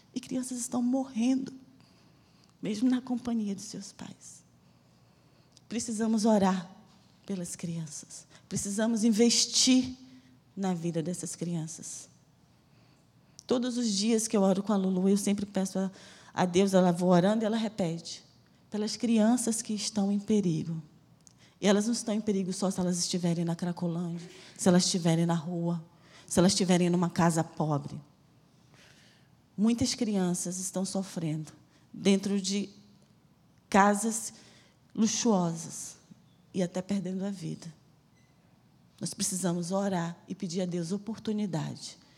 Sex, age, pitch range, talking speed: female, 20-39, 165-205 Hz, 130 wpm